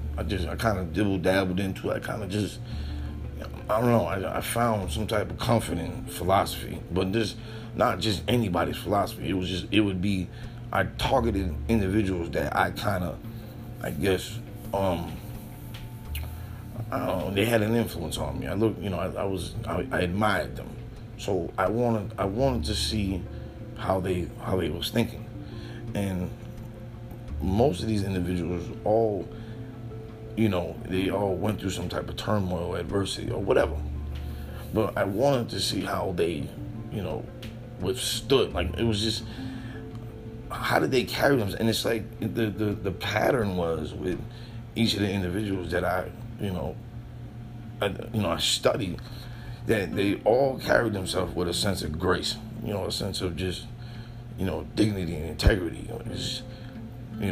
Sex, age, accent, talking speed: male, 30-49, American, 170 wpm